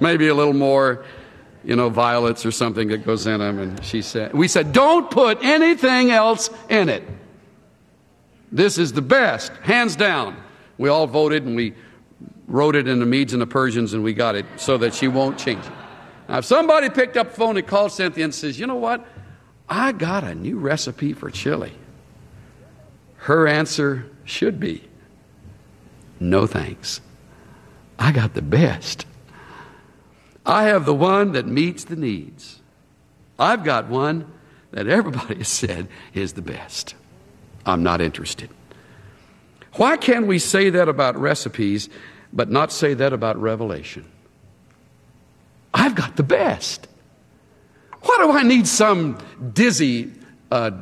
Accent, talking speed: American, 155 wpm